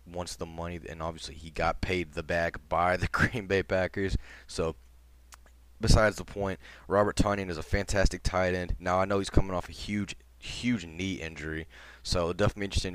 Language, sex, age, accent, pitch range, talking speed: English, male, 20-39, American, 80-95 Hz, 185 wpm